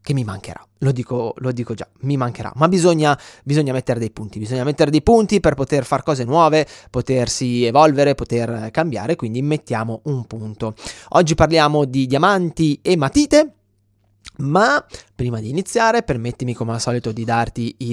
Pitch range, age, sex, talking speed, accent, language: 115-150 Hz, 20-39, male, 165 wpm, native, Italian